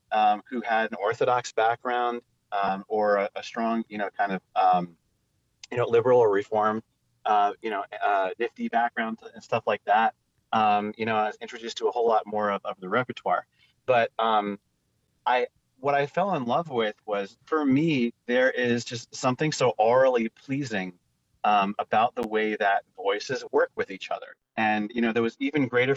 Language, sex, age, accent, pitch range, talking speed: English, male, 30-49, American, 105-135 Hz, 190 wpm